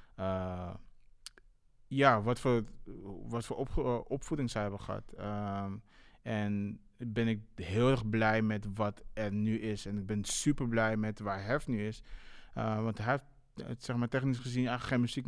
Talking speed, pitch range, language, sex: 160 wpm, 105-120 Hz, Dutch, male